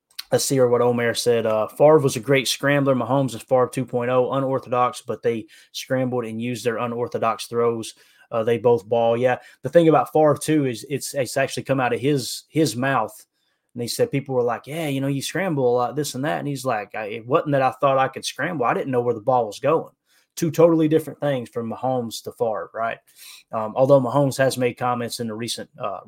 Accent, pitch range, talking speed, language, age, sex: American, 120-140 Hz, 230 wpm, English, 20-39, male